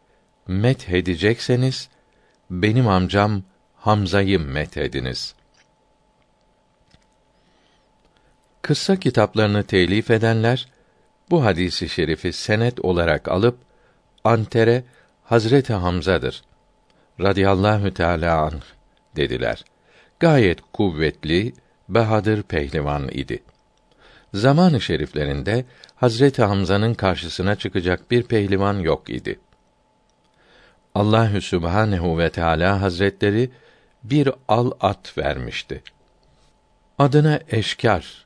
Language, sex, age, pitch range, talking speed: Turkish, male, 60-79, 90-120 Hz, 75 wpm